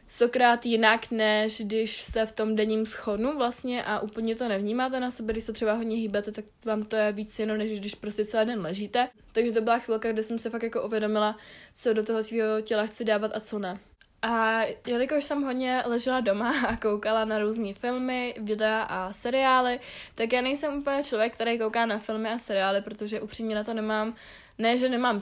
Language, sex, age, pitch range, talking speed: Czech, female, 20-39, 210-230 Hz, 205 wpm